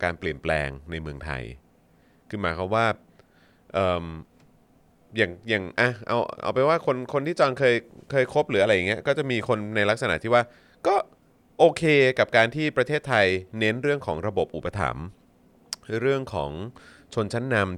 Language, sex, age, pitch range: Thai, male, 20-39, 85-120 Hz